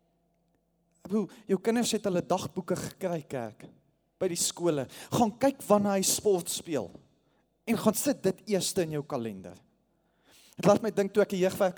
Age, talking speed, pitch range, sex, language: 20-39, 165 wpm, 155-195 Hz, male, English